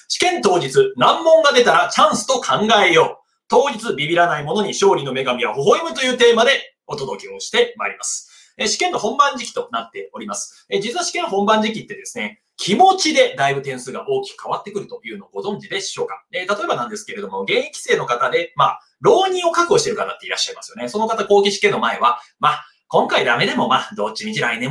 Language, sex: Japanese, male